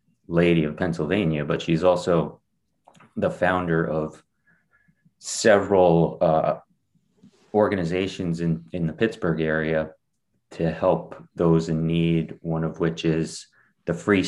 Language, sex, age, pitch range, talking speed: English, male, 30-49, 80-90 Hz, 120 wpm